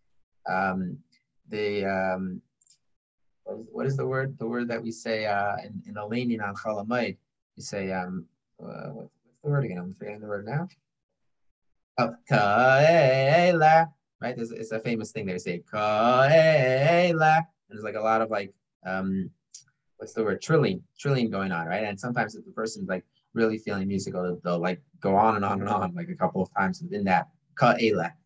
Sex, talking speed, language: male, 180 wpm, English